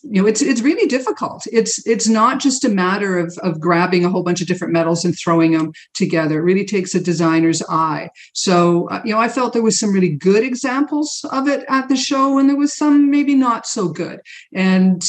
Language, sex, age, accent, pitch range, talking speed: English, female, 50-69, American, 175-225 Hz, 225 wpm